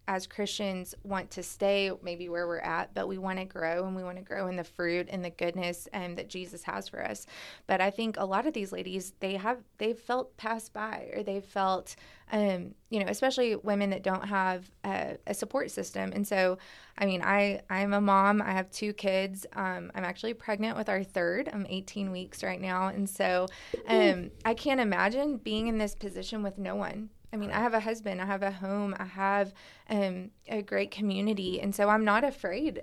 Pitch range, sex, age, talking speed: 185-215 Hz, female, 20-39, 220 wpm